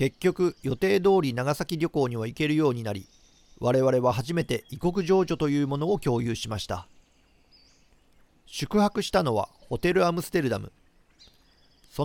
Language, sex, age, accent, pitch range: Japanese, male, 40-59, native, 115-170 Hz